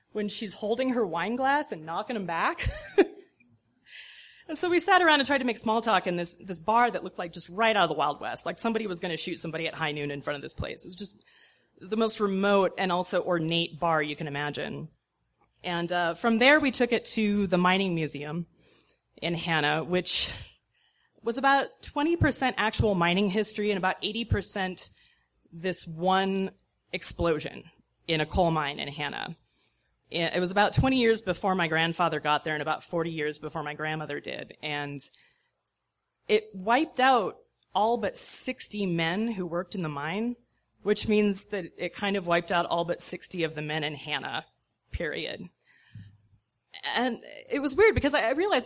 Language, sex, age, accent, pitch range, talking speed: English, female, 30-49, American, 165-230 Hz, 185 wpm